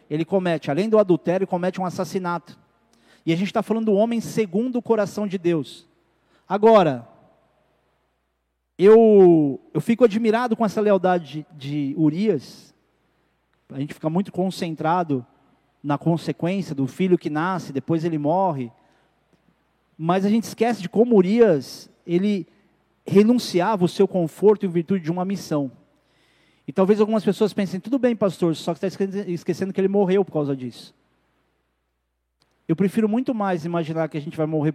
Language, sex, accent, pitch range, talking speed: Portuguese, male, Brazilian, 155-200 Hz, 160 wpm